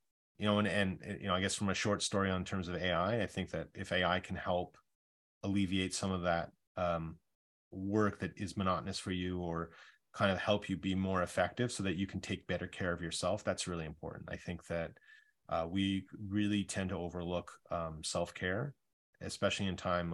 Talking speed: 205 wpm